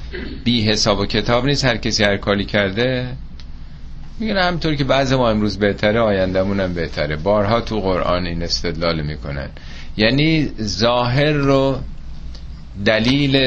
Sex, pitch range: male, 85-125 Hz